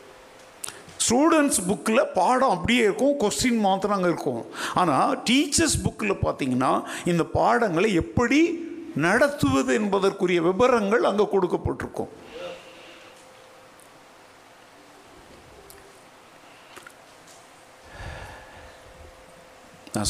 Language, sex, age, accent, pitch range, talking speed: Tamil, male, 60-79, native, 135-205 Hz, 65 wpm